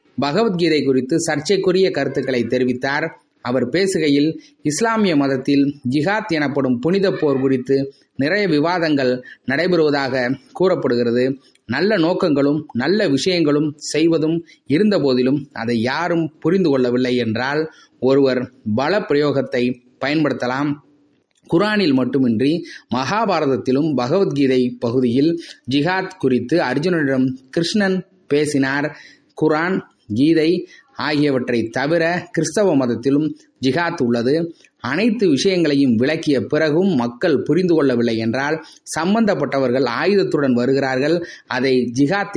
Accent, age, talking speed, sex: native, 30-49, 90 wpm, male